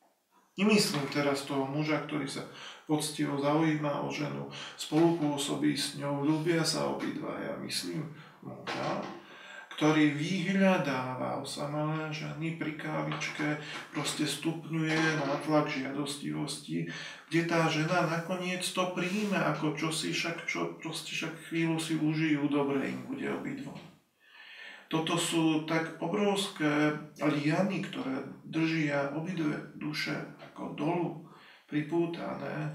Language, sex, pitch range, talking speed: Slovak, male, 145-165 Hz, 110 wpm